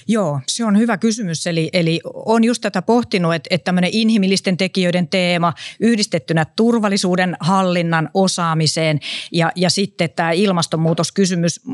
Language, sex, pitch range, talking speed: Finnish, female, 170-195 Hz, 135 wpm